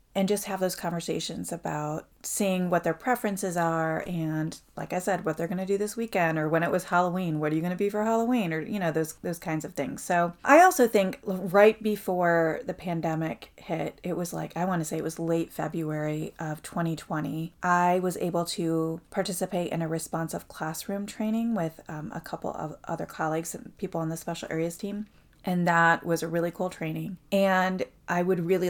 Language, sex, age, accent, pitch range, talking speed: English, female, 30-49, American, 160-195 Hz, 210 wpm